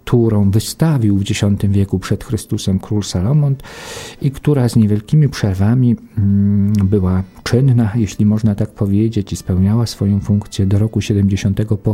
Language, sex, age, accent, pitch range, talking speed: English, male, 50-69, Polish, 100-115 Hz, 140 wpm